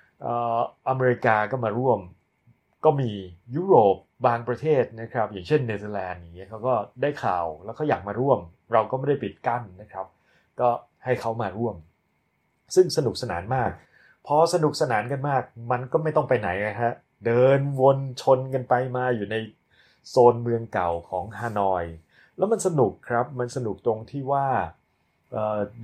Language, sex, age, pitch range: Thai, male, 30-49, 95-130 Hz